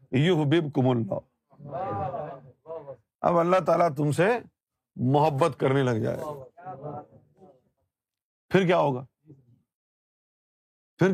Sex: male